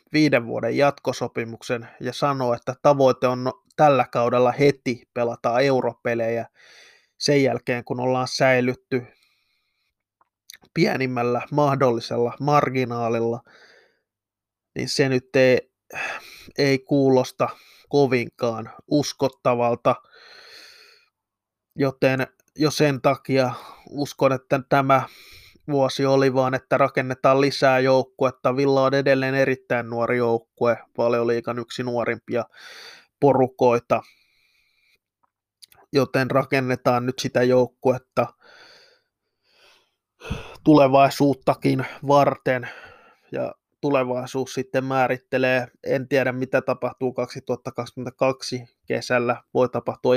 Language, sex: Finnish, male